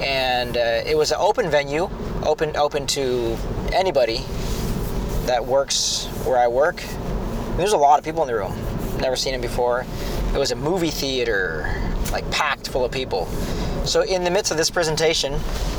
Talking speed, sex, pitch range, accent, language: 180 wpm, male, 120-155 Hz, American, English